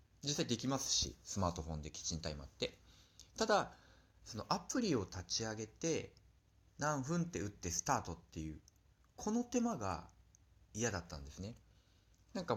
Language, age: Japanese, 40-59